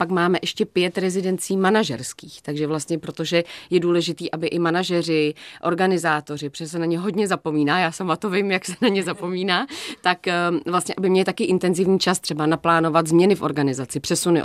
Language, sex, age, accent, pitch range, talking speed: Czech, female, 30-49, native, 150-180 Hz, 180 wpm